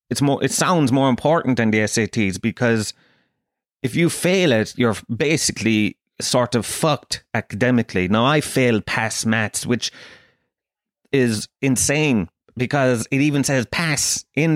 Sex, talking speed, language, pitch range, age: male, 140 wpm, English, 110-145 Hz, 30-49